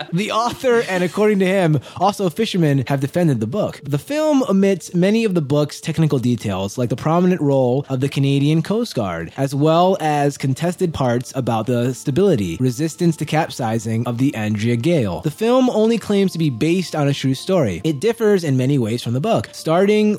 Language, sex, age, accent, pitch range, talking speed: English, male, 20-39, American, 130-180 Hz, 195 wpm